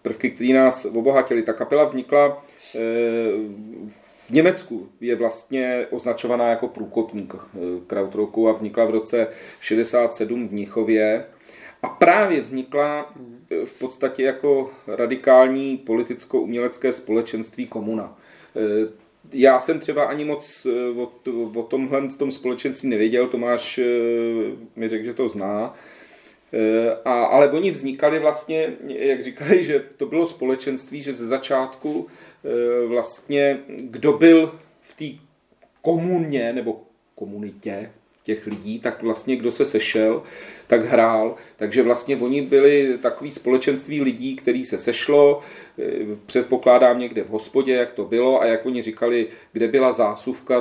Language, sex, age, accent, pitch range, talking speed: Czech, male, 40-59, native, 115-140 Hz, 130 wpm